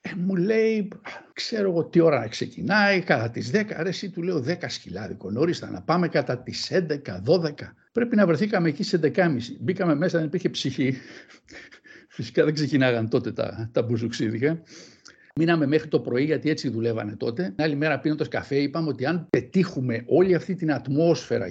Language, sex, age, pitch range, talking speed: Greek, male, 60-79, 125-180 Hz, 175 wpm